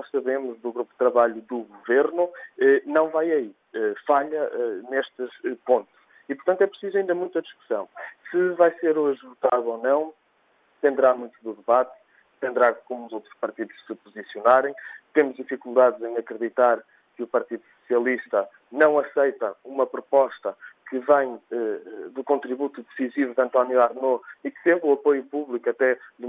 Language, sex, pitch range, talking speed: Portuguese, male, 120-155 Hz, 155 wpm